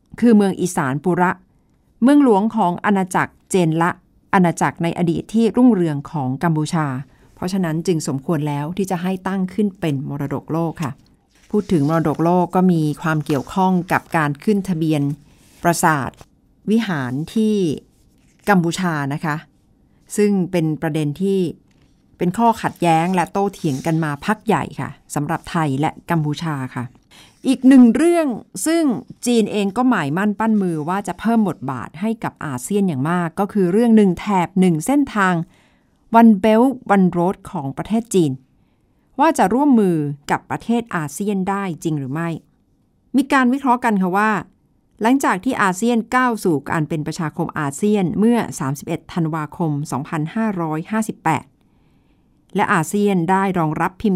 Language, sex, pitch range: Thai, female, 155-210 Hz